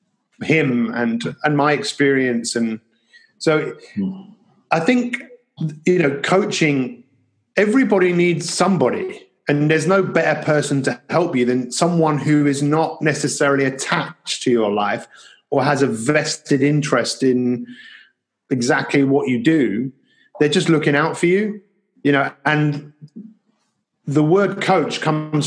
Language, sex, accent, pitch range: English, male, British, 135-180 Hz